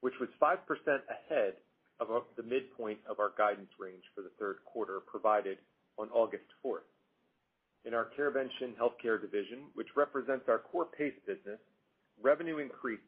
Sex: male